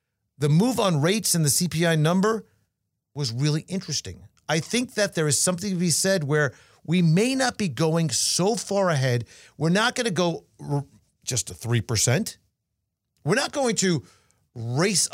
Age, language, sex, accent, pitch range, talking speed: 40-59, English, male, American, 130-185 Hz, 165 wpm